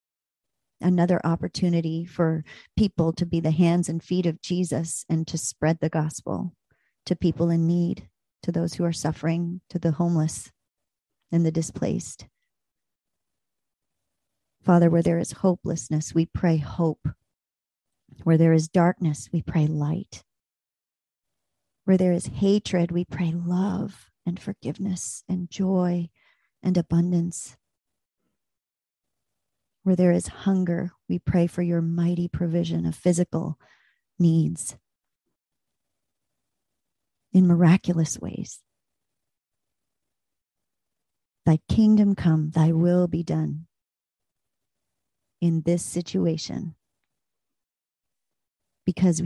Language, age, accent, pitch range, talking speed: English, 40-59, American, 160-180 Hz, 105 wpm